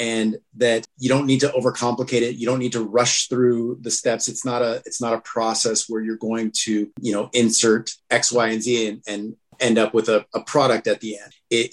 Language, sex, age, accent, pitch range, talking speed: English, male, 30-49, American, 115-125 Hz, 235 wpm